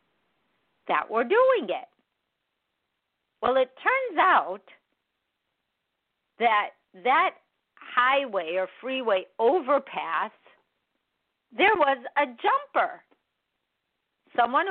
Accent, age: American, 50-69